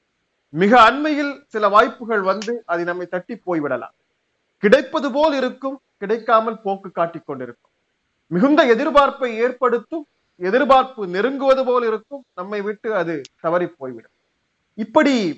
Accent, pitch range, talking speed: native, 175-245 Hz, 115 wpm